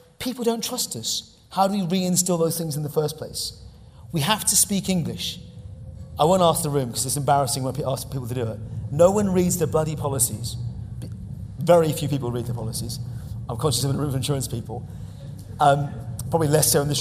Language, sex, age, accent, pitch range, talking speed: English, male, 40-59, British, 135-180 Hz, 210 wpm